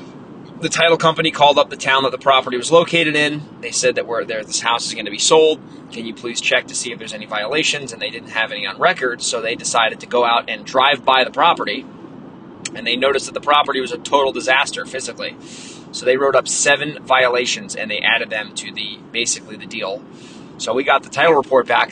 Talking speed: 235 wpm